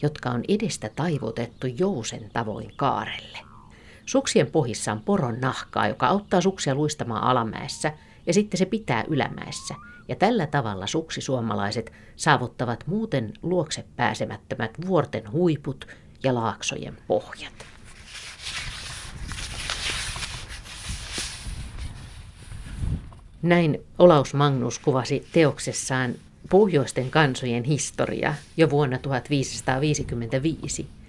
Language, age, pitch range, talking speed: Finnish, 50-69, 120-160 Hz, 90 wpm